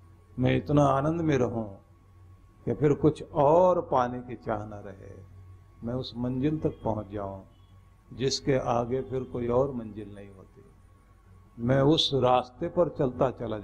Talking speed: 145 wpm